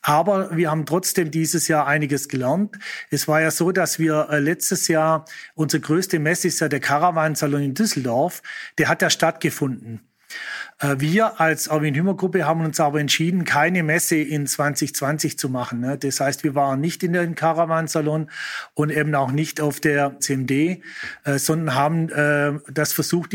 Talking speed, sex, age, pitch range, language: 160 wpm, male, 40-59, 145-175 Hz, German